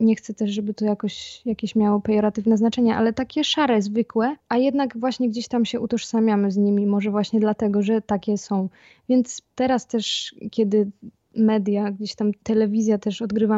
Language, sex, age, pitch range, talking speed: Polish, female, 20-39, 210-235 Hz, 170 wpm